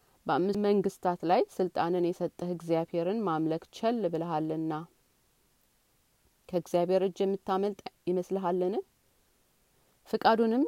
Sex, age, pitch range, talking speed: female, 30-49, 175-210 Hz, 90 wpm